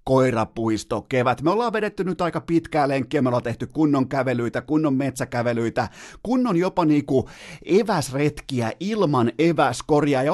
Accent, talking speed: native, 135 wpm